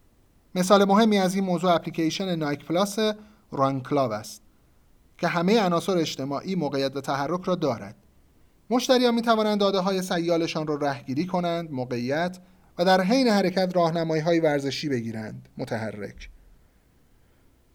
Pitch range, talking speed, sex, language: 140-200 Hz, 130 wpm, male, Persian